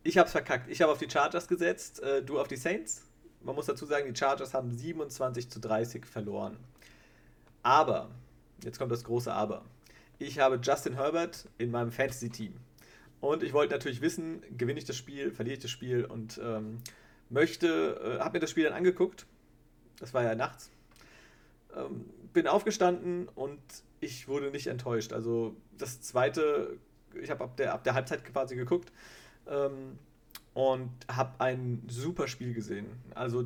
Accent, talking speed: German, 165 wpm